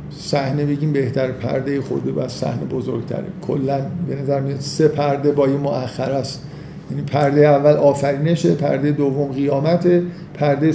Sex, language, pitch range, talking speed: male, Persian, 145-175 Hz, 140 wpm